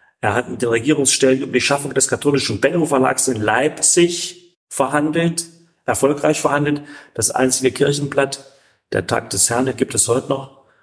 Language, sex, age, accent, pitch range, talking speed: German, male, 40-59, German, 105-140 Hz, 150 wpm